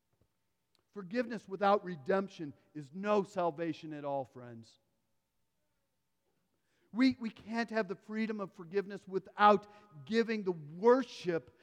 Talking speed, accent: 110 wpm, American